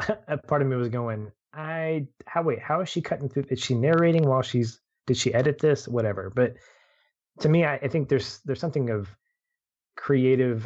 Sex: male